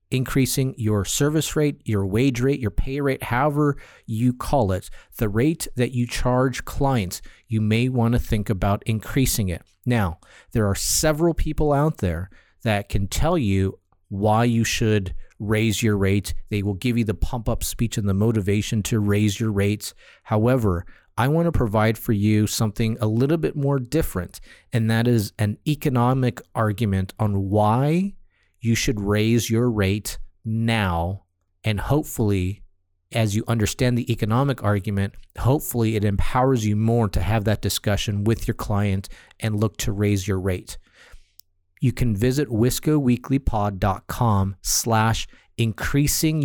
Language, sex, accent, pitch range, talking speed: English, male, American, 100-125 Hz, 150 wpm